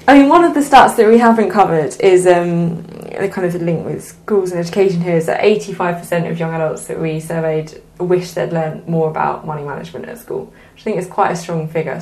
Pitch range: 165-200 Hz